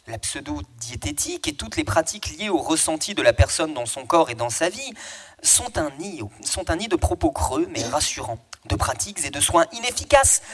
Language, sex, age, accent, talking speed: French, male, 30-49, French, 195 wpm